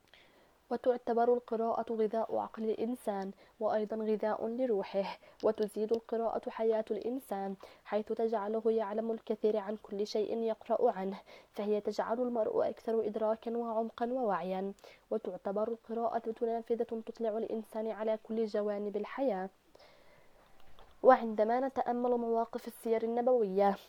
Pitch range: 215-235 Hz